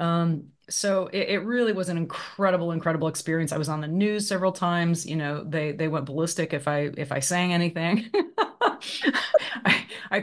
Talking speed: 180 wpm